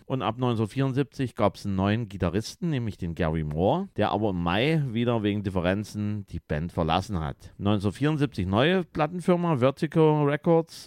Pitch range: 90-130 Hz